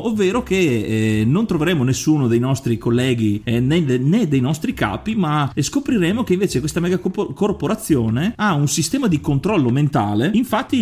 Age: 30-49